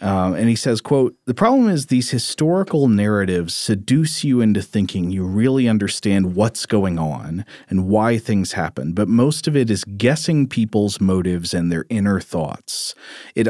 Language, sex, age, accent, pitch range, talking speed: English, male, 40-59, American, 100-130 Hz, 170 wpm